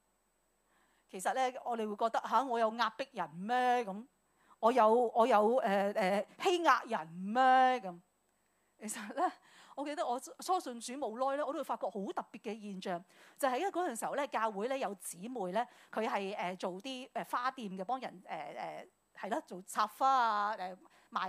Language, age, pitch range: Chinese, 40-59, 205-275 Hz